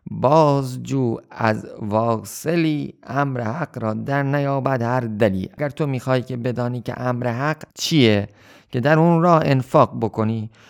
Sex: male